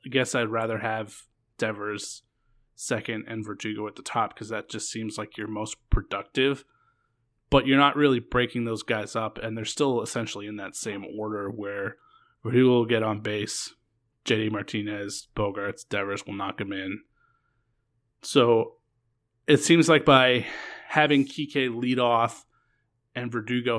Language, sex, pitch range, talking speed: English, male, 110-130 Hz, 155 wpm